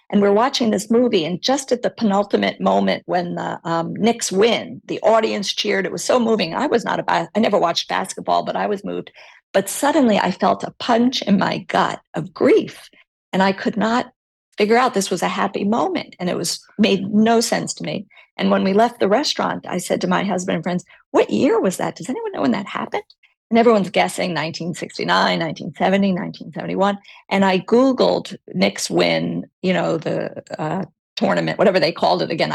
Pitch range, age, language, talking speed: 185-225 Hz, 50-69, English, 200 wpm